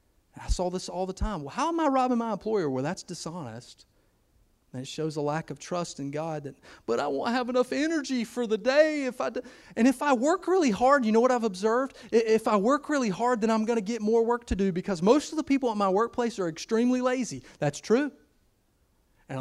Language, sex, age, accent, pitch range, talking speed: English, male, 30-49, American, 150-245 Hz, 225 wpm